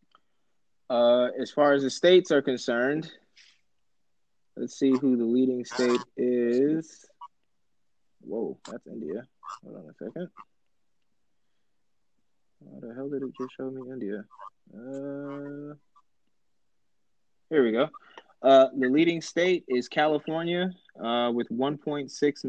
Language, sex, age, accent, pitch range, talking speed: English, male, 20-39, American, 120-140 Hz, 115 wpm